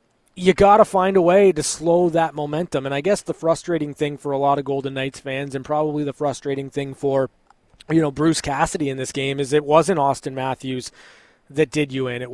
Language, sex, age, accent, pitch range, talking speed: English, male, 20-39, American, 135-170 Hz, 220 wpm